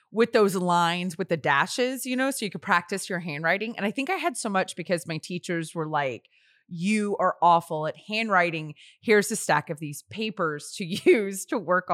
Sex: female